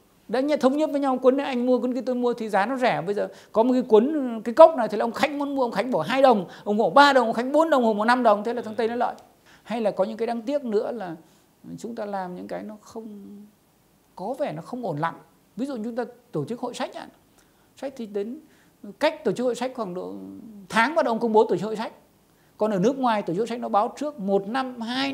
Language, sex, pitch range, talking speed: Vietnamese, male, 195-250 Hz, 280 wpm